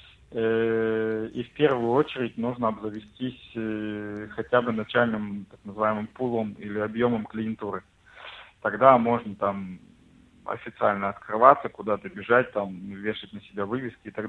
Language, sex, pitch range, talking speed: English, male, 105-115 Hz, 120 wpm